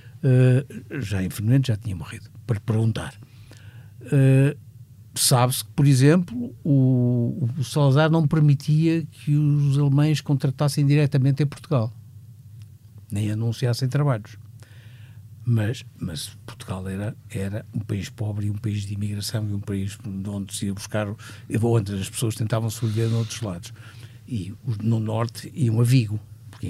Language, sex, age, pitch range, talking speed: Portuguese, male, 50-69, 110-145 Hz, 145 wpm